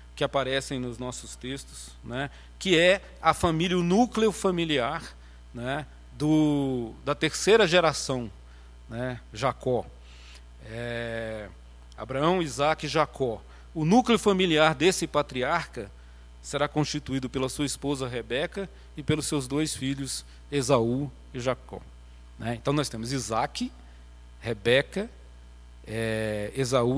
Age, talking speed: 40-59, 110 wpm